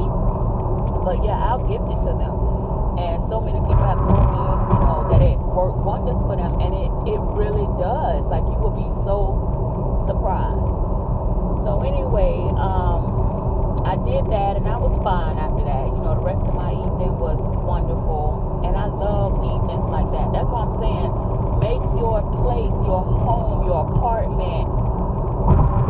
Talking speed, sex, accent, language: 165 wpm, female, American, English